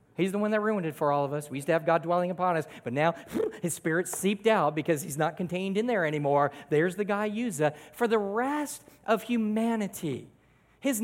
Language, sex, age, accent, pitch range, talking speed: English, male, 40-59, American, 150-235 Hz, 225 wpm